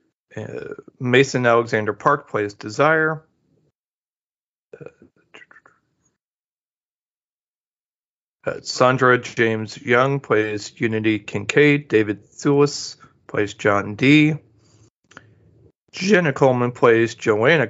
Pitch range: 105-130 Hz